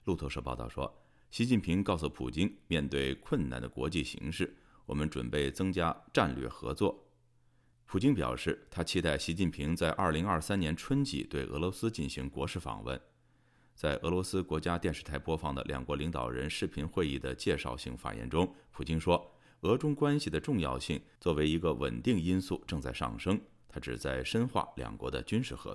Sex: male